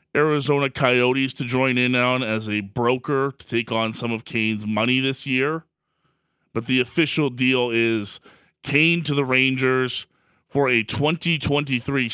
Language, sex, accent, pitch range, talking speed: English, male, American, 110-140 Hz, 150 wpm